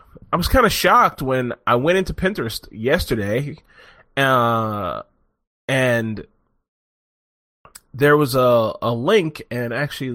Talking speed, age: 120 wpm, 20-39